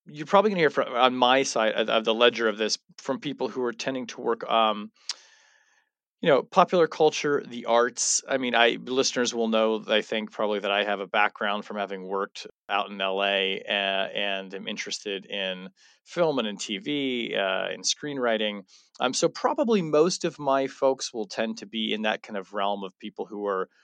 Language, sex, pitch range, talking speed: English, male, 110-140 Hz, 200 wpm